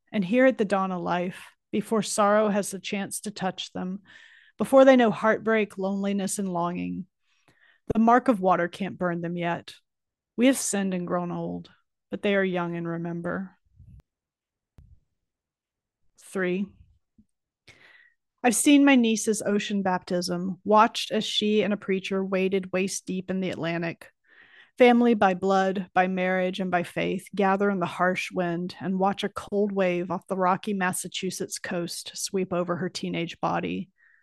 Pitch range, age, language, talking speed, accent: 180-215 Hz, 30-49, English, 155 wpm, American